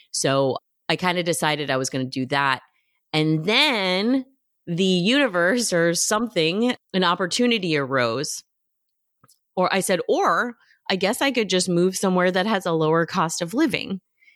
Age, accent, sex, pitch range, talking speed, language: 30-49, American, female, 140-175 Hz, 160 wpm, English